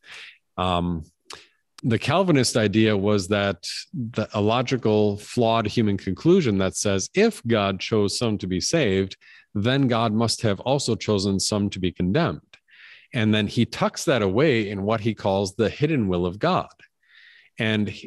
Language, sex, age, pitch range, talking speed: English, male, 50-69, 100-115 Hz, 155 wpm